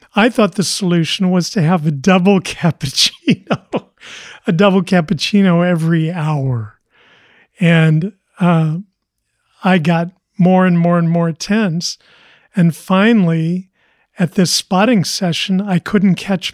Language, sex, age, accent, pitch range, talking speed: English, male, 40-59, American, 165-190 Hz, 125 wpm